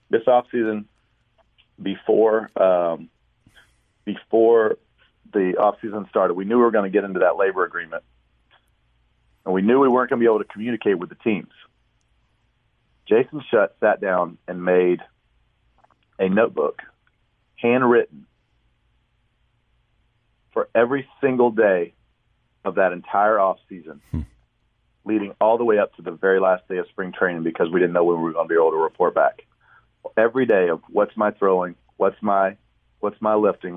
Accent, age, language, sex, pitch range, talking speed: American, 40-59, English, male, 95-140 Hz, 155 wpm